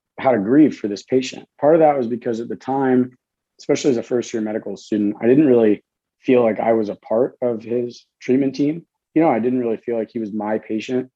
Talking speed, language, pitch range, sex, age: 240 wpm, English, 110-125 Hz, male, 30-49